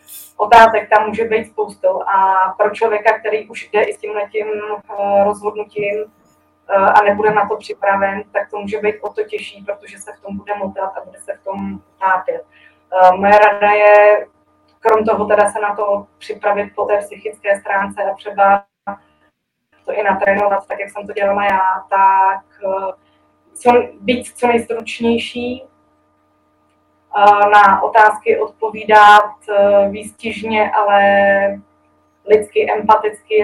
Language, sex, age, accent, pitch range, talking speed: Czech, female, 20-39, native, 195-210 Hz, 135 wpm